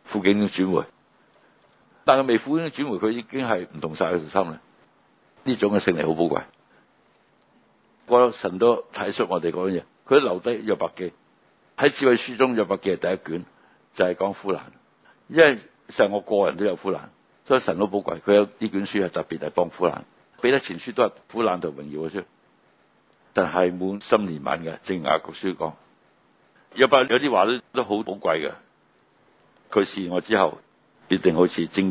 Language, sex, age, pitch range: Chinese, male, 60-79, 90-125 Hz